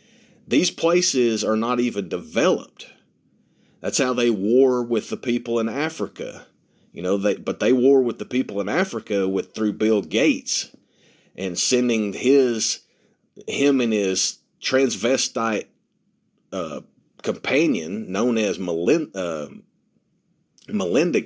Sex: male